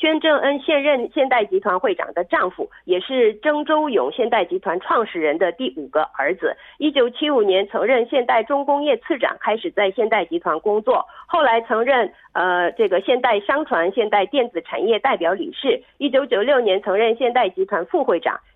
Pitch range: 245-325 Hz